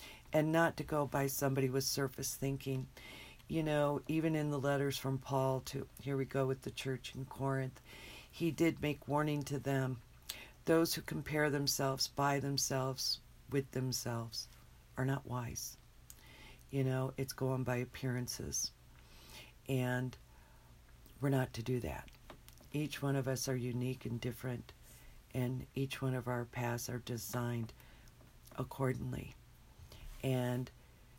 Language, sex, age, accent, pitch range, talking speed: English, female, 50-69, American, 125-140 Hz, 140 wpm